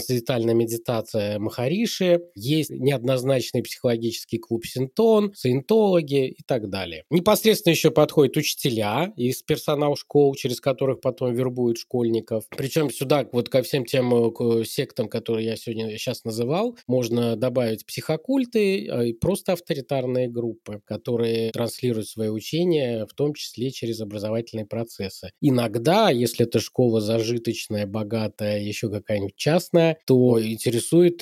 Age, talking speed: 20-39, 125 wpm